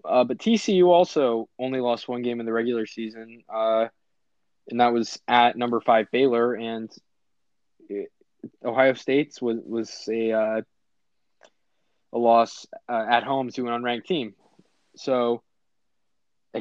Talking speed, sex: 140 wpm, male